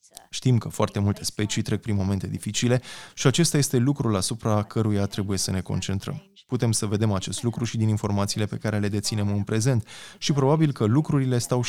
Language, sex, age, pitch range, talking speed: Romanian, male, 20-39, 100-130 Hz, 195 wpm